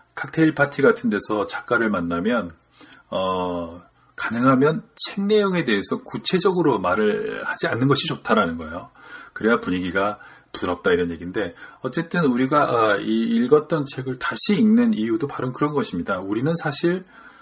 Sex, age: male, 40-59